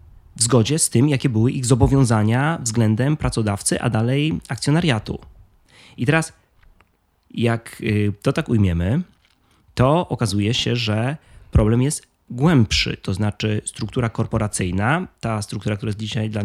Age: 20-39